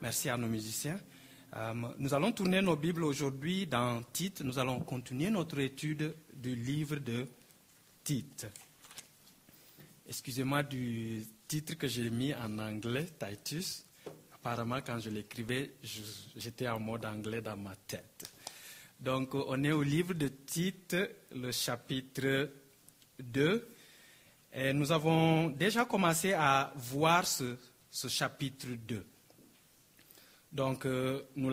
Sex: male